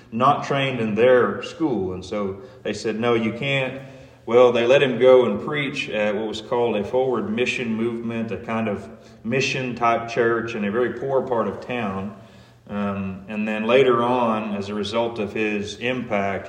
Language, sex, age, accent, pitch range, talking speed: English, male, 40-59, American, 100-125 Hz, 185 wpm